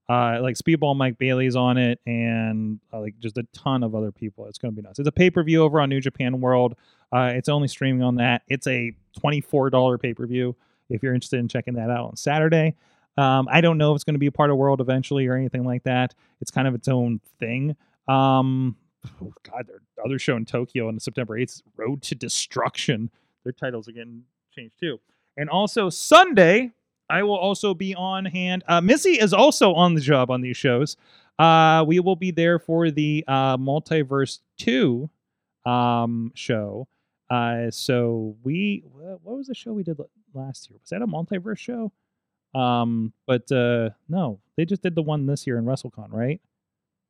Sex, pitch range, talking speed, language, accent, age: male, 120-170 Hz, 195 wpm, English, American, 30-49